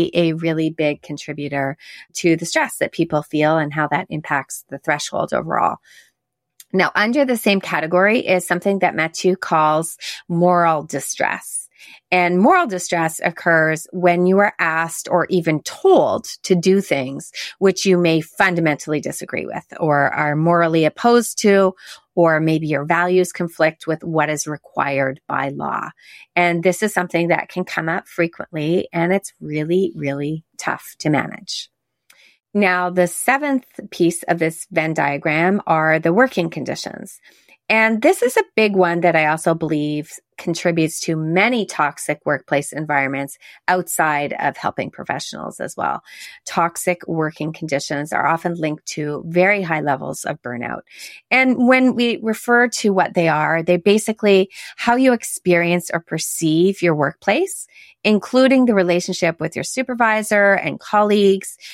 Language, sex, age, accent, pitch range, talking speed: English, female, 30-49, American, 155-195 Hz, 150 wpm